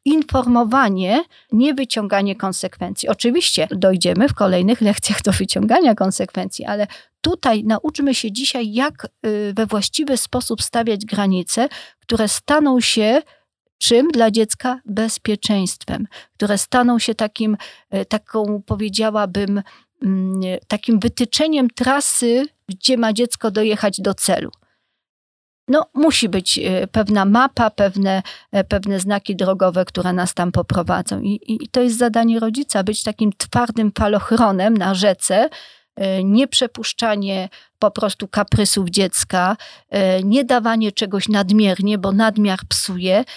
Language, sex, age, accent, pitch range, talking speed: Polish, female, 40-59, native, 200-235 Hz, 115 wpm